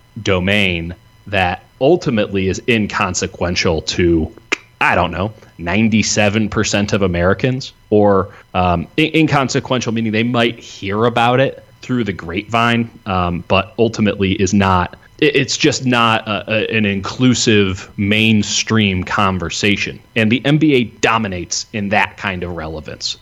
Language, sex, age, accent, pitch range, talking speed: English, male, 30-49, American, 95-115 Hz, 115 wpm